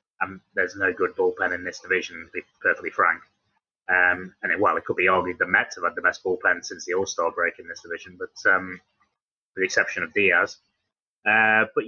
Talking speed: 215 wpm